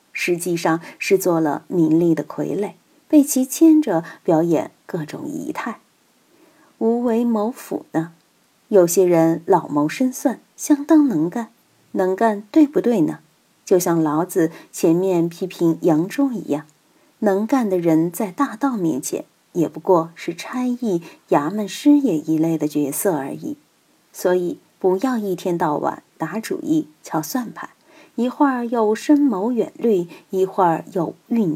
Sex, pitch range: female, 170-270 Hz